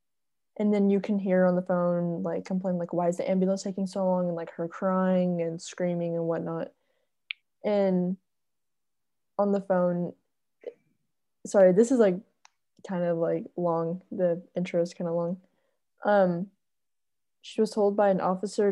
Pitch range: 170-200 Hz